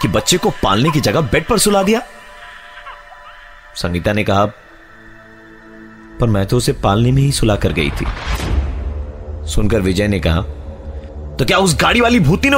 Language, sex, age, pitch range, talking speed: Hindi, male, 30-49, 70-105 Hz, 165 wpm